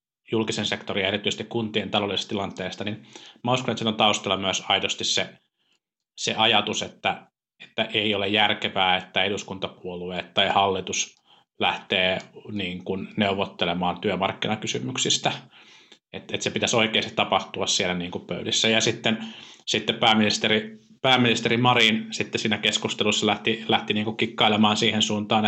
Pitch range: 105-120 Hz